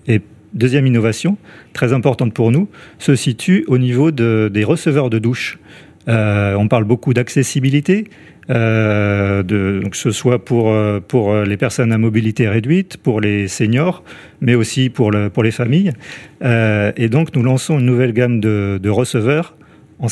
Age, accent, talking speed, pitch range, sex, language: 40-59, French, 165 wpm, 105-140 Hz, male, French